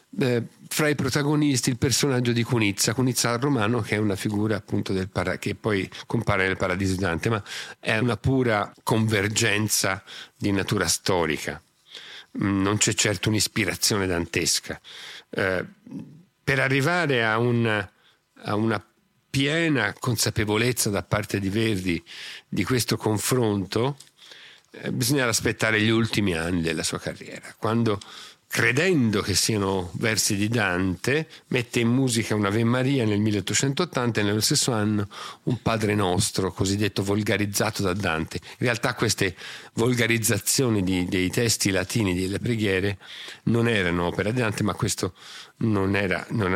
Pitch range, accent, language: 95-120 Hz, native, Italian